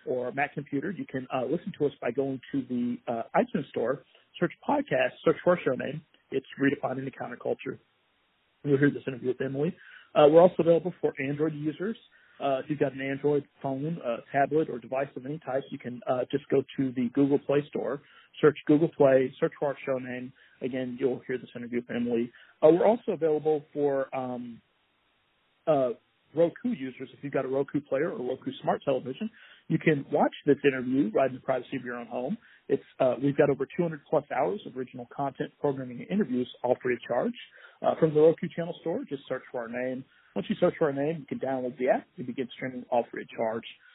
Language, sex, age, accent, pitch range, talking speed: English, male, 40-59, American, 130-155 Hz, 215 wpm